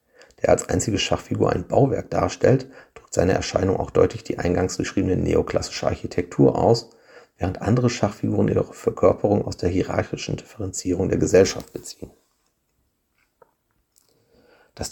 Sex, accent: male, German